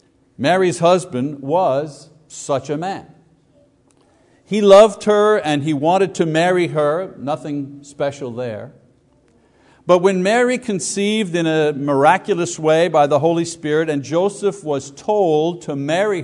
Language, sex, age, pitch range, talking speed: English, male, 60-79, 145-200 Hz, 135 wpm